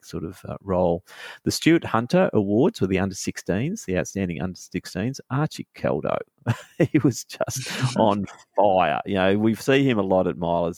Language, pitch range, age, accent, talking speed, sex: English, 90-100 Hz, 40-59, Australian, 180 wpm, male